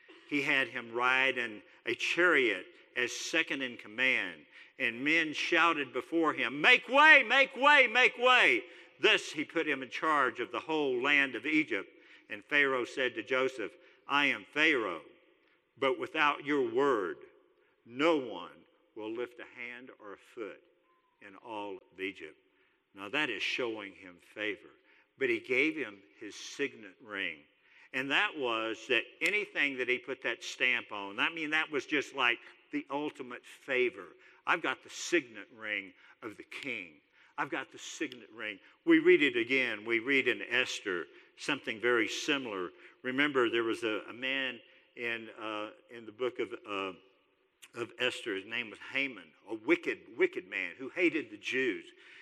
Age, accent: 50-69, American